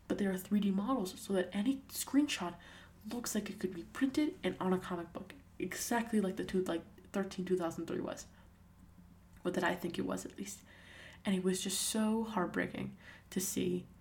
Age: 20-39